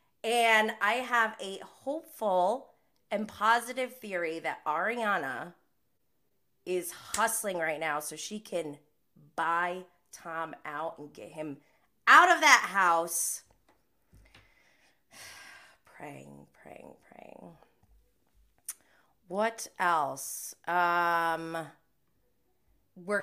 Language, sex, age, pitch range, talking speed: English, female, 20-39, 165-250 Hz, 90 wpm